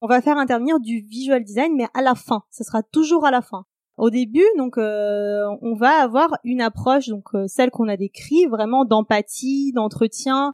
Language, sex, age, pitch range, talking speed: French, female, 20-39, 220-275 Hz, 200 wpm